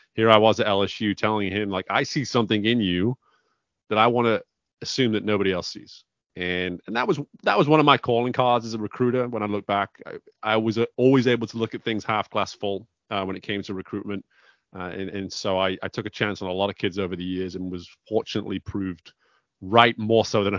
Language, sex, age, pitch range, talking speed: English, male, 30-49, 95-115 Hz, 240 wpm